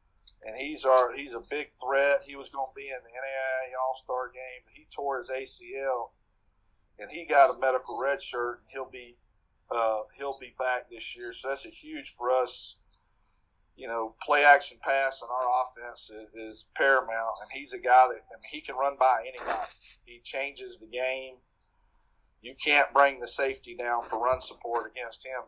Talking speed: 185 wpm